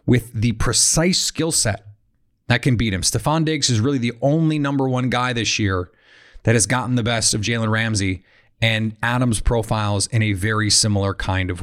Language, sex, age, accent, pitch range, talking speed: English, male, 30-49, American, 110-130 Hz, 190 wpm